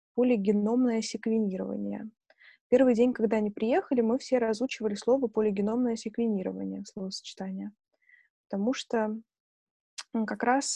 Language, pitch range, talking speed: Russian, 210-245 Hz, 100 wpm